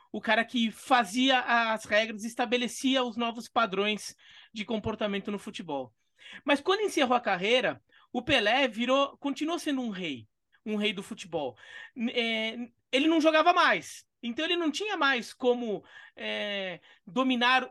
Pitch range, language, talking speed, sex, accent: 205-260 Hz, Portuguese, 145 wpm, male, Brazilian